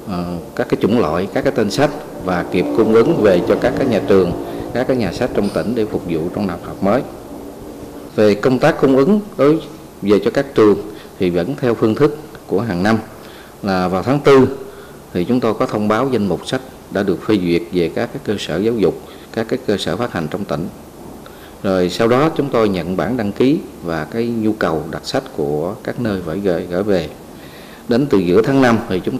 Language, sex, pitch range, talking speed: Vietnamese, male, 95-135 Hz, 225 wpm